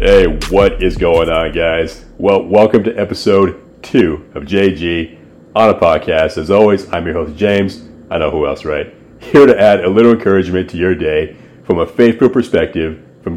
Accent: American